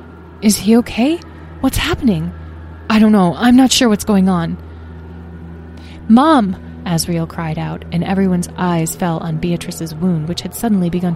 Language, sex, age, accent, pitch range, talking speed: English, female, 20-39, American, 155-205 Hz, 155 wpm